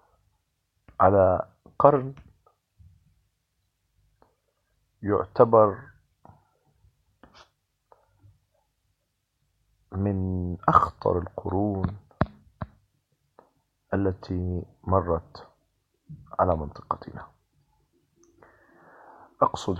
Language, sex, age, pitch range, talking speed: Arabic, male, 50-69, 85-100 Hz, 35 wpm